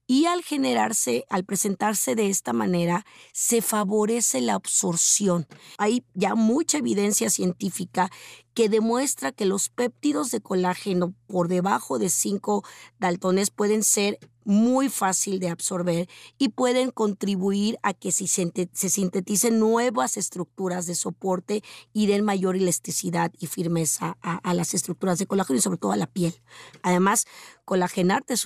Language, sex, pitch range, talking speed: Spanish, female, 180-225 Hz, 145 wpm